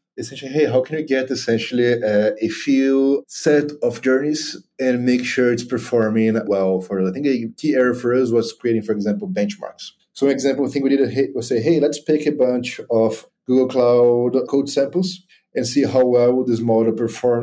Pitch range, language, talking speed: 115-140 Hz, English, 195 wpm